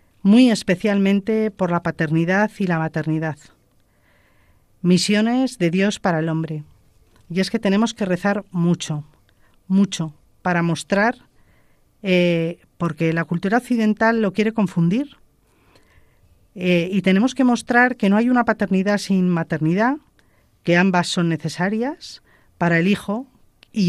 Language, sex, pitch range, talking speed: Spanish, female, 165-210 Hz, 130 wpm